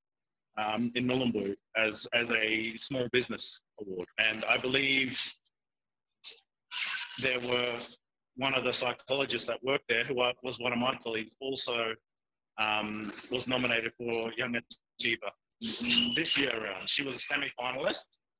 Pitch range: 115-135 Hz